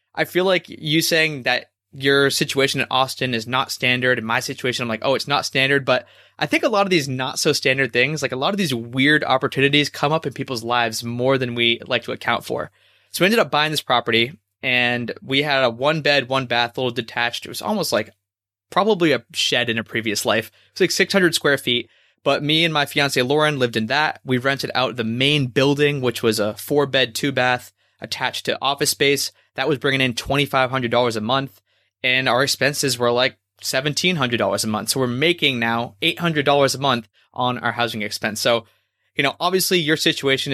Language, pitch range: English, 120-145 Hz